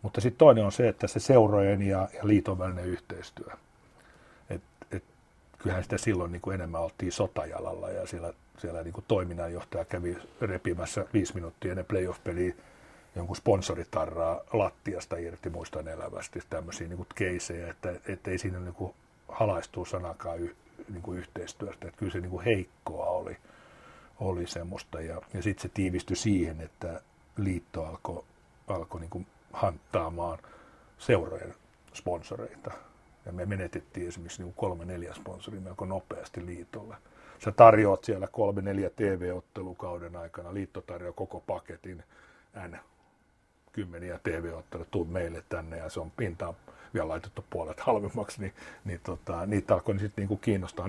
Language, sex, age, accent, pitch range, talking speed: Finnish, male, 60-79, native, 85-100 Hz, 140 wpm